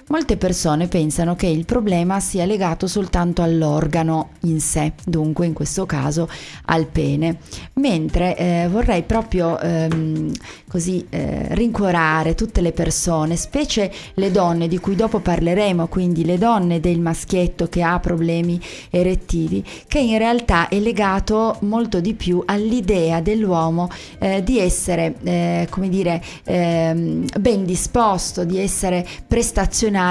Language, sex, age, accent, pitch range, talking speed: Italian, female, 30-49, native, 165-205 Hz, 130 wpm